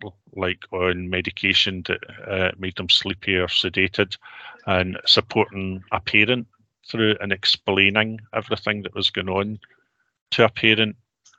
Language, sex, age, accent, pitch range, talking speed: English, male, 40-59, British, 95-105 Hz, 130 wpm